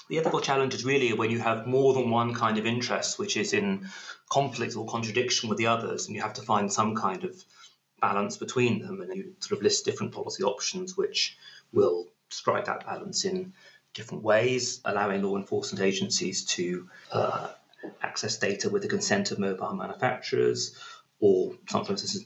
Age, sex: 30-49, male